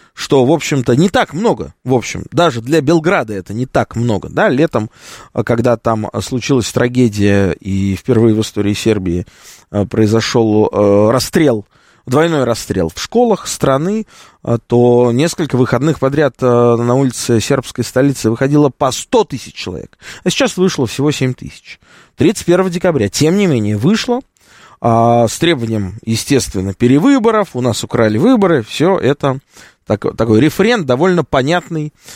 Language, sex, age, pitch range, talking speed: Russian, male, 20-39, 115-160 Hz, 135 wpm